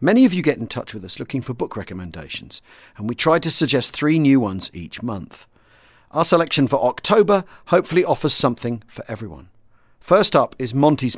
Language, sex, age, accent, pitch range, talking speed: English, male, 40-59, British, 115-160 Hz, 190 wpm